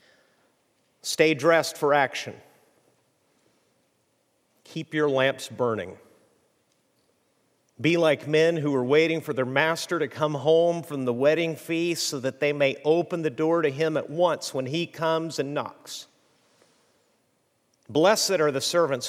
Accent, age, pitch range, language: American, 50-69, 135-165 Hz, English